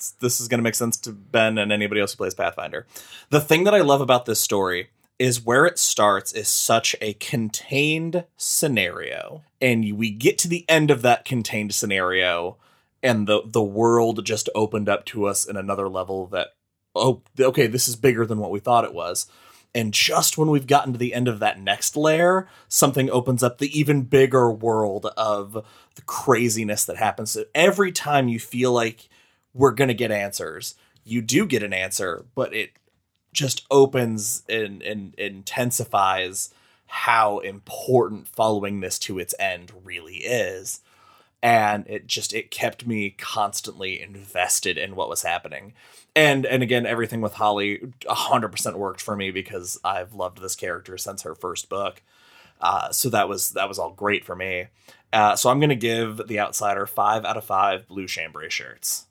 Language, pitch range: English, 105-130 Hz